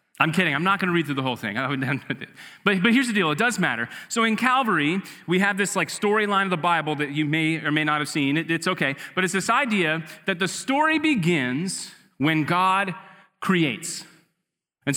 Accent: American